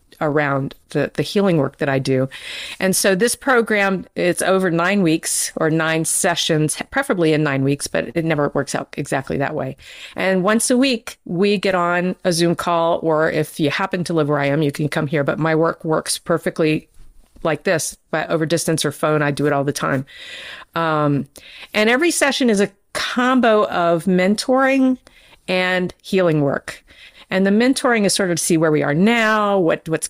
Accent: American